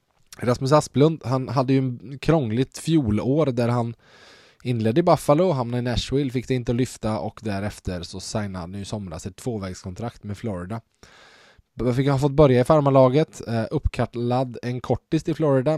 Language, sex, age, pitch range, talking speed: Swedish, male, 20-39, 105-130 Hz, 165 wpm